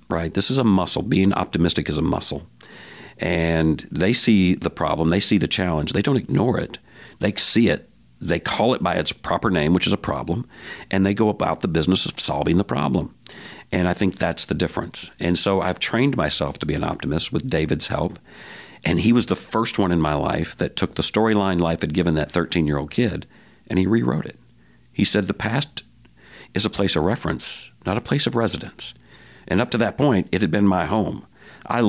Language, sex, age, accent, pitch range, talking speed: English, male, 60-79, American, 80-100 Hz, 215 wpm